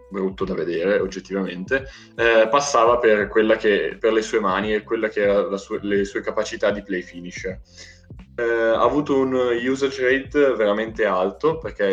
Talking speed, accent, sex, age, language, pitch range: 160 wpm, native, male, 20-39, Italian, 100-150 Hz